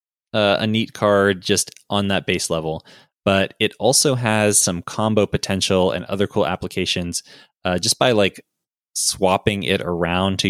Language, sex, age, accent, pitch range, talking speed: English, male, 20-39, American, 85-105 Hz, 160 wpm